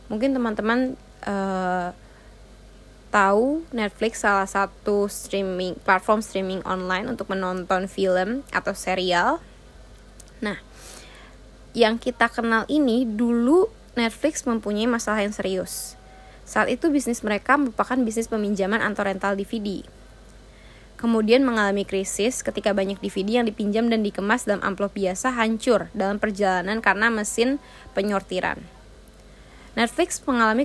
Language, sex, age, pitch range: Indonesian, female, 20-39, 195-235 Hz